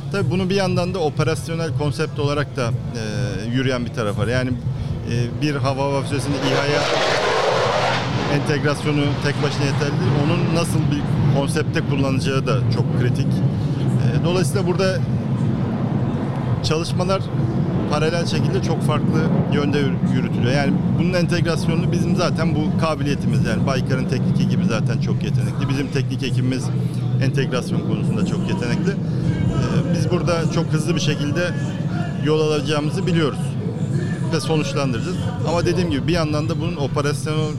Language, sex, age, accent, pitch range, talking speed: Turkish, male, 40-59, native, 135-155 Hz, 130 wpm